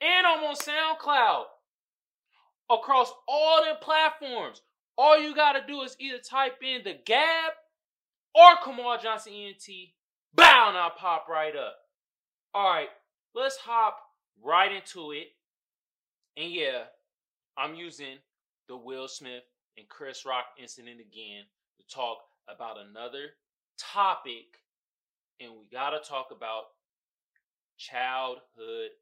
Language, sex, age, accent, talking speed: English, male, 20-39, American, 125 wpm